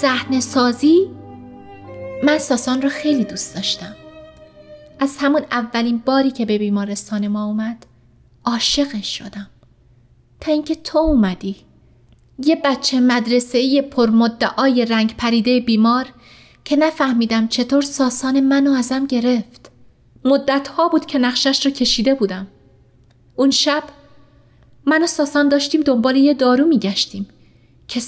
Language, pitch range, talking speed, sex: Persian, 215-285 Hz, 125 wpm, female